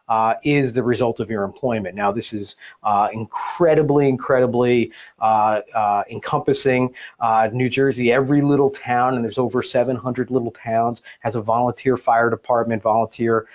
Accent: American